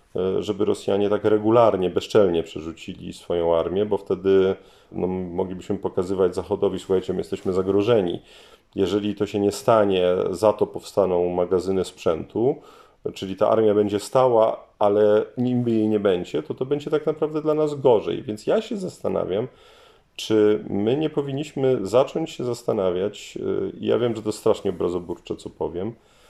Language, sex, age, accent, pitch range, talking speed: Polish, male, 40-59, native, 95-135 Hz, 145 wpm